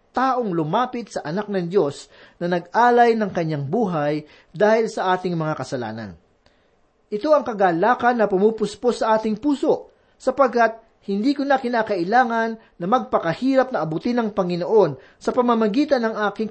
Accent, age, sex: native, 40-59, male